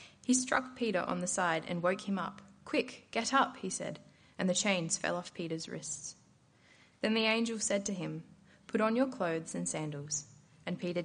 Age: 20-39